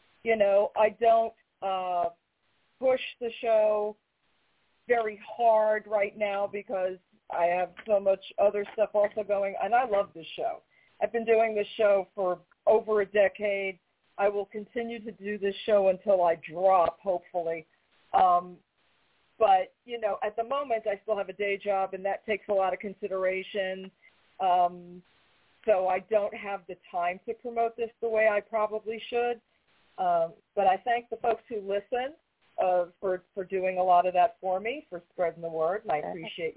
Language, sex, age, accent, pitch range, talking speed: English, female, 40-59, American, 180-225 Hz, 175 wpm